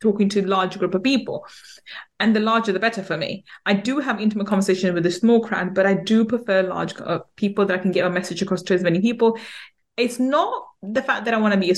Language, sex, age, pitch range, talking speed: English, female, 20-39, 190-230 Hz, 255 wpm